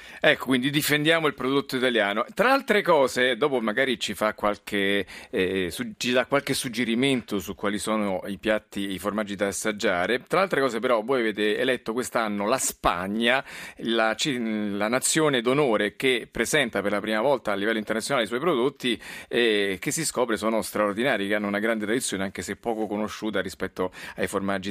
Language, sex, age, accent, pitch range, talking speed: Italian, male, 40-59, native, 105-130 Hz, 175 wpm